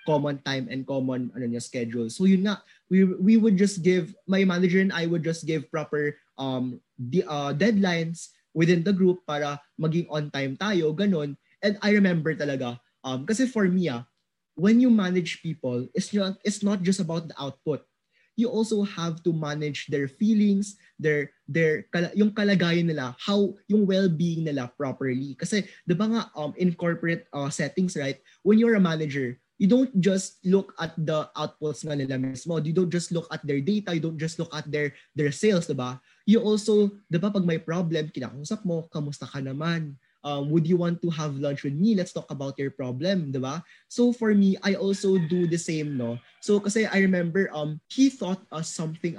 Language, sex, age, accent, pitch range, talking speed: Filipino, male, 20-39, native, 150-195 Hz, 200 wpm